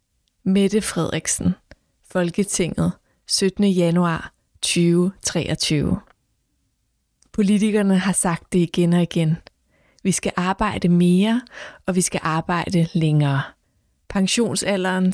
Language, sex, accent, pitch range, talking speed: Danish, female, native, 170-195 Hz, 90 wpm